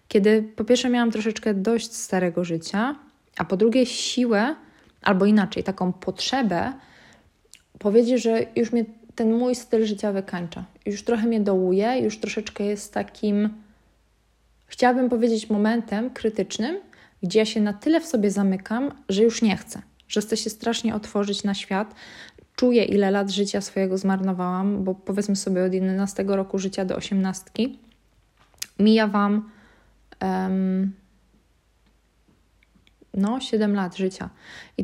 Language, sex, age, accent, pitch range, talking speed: Polish, female, 20-39, native, 200-235 Hz, 135 wpm